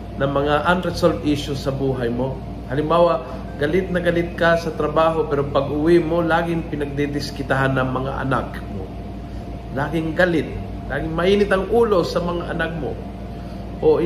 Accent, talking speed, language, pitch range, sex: native, 150 wpm, Filipino, 115-165 Hz, male